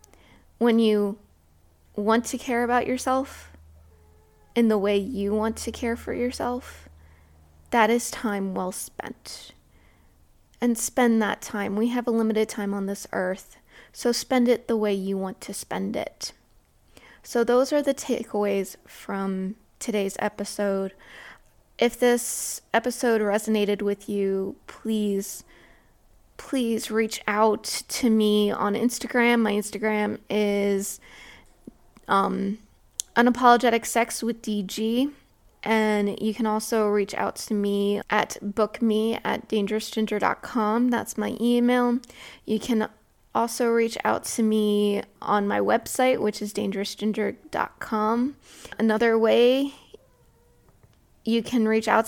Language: English